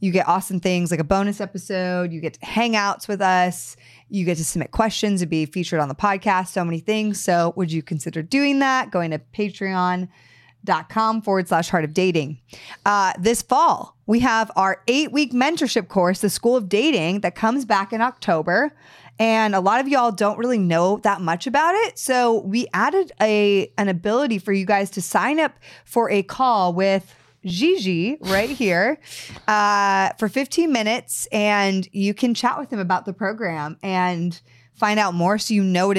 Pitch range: 175-215 Hz